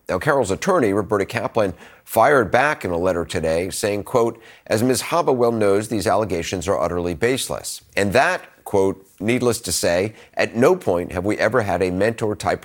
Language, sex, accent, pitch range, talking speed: English, male, American, 90-115 Hz, 180 wpm